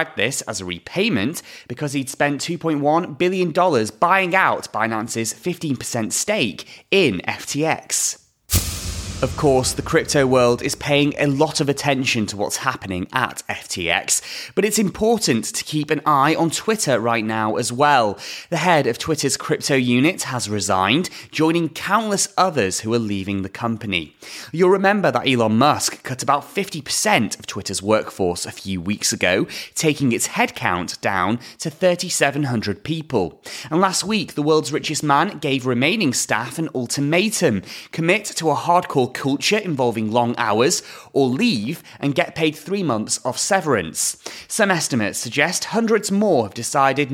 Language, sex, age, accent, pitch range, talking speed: English, male, 30-49, British, 115-165 Hz, 150 wpm